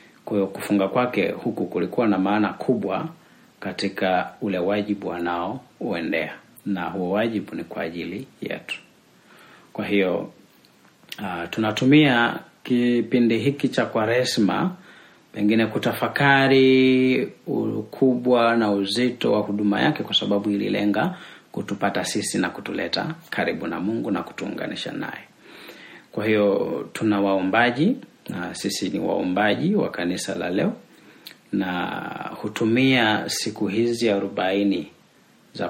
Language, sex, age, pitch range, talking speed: Swahili, male, 40-59, 100-125 Hz, 115 wpm